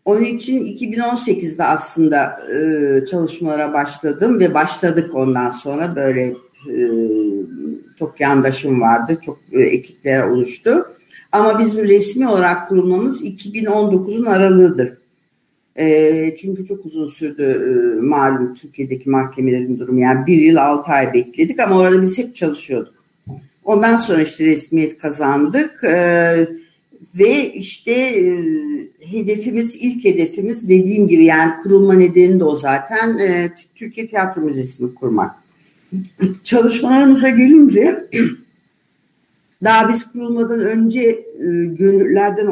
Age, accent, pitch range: 50-69, native, 145-210 Hz